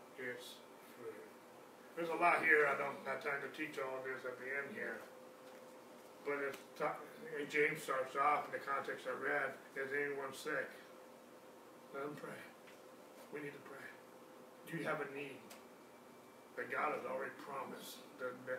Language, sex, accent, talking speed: English, male, American, 175 wpm